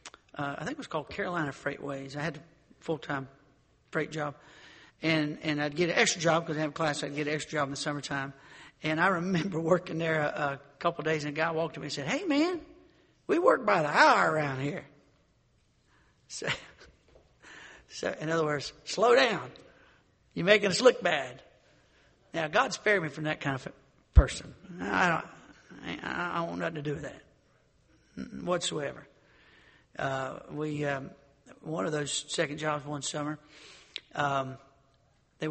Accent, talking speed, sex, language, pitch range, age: American, 180 wpm, male, English, 145-175 Hz, 60-79